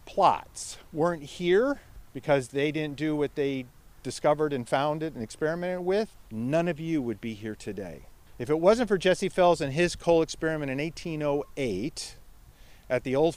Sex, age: male, 50-69